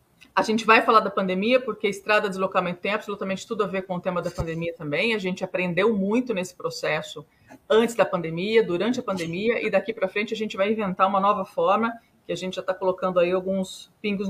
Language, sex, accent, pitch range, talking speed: Portuguese, female, Brazilian, 180-230 Hz, 220 wpm